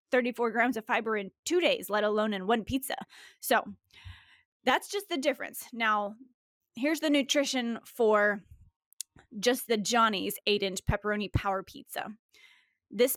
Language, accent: English, American